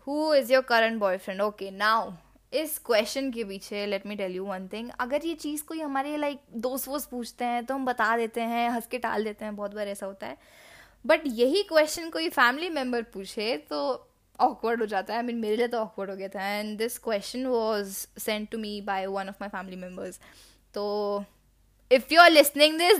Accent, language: native, Hindi